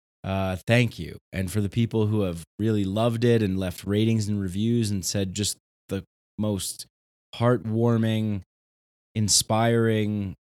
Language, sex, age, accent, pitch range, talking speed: English, male, 20-39, American, 85-110 Hz, 135 wpm